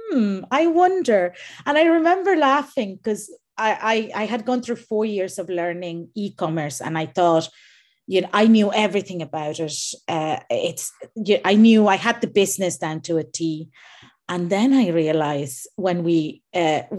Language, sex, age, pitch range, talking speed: English, female, 30-49, 165-220 Hz, 165 wpm